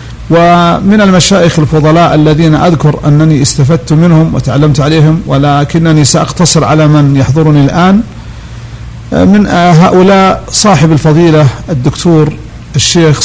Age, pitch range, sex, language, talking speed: 50-69, 150-175 Hz, male, Arabic, 100 wpm